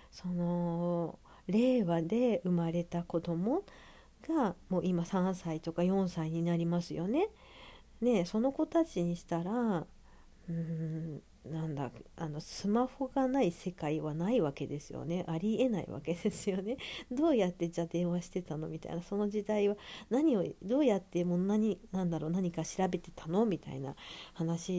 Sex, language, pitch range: female, Japanese, 170-230 Hz